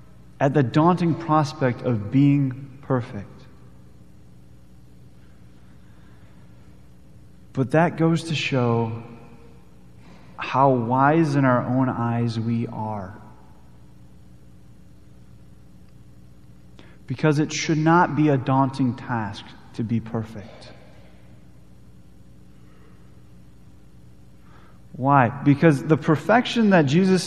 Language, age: English, 30-49